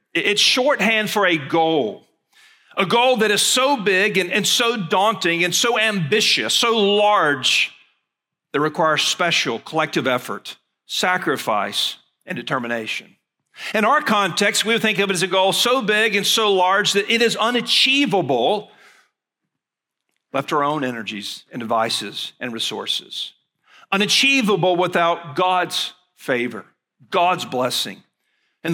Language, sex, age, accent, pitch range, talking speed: English, male, 50-69, American, 145-210 Hz, 135 wpm